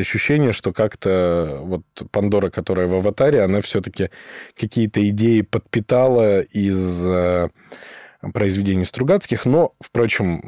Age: 20-39